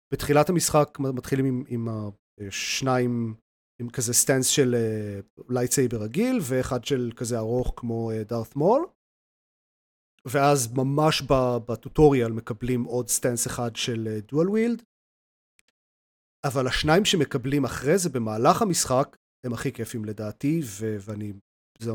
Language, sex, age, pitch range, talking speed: Hebrew, male, 30-49, 115-140 Hz, 120 wpm